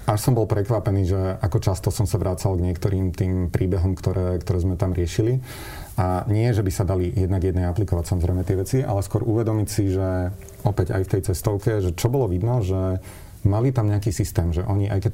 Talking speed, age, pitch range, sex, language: 215 wpm, 40-59, 95-110 Hz, male, Slovak